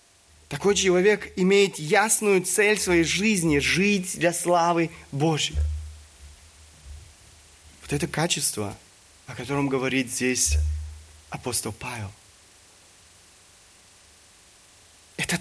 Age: 30-49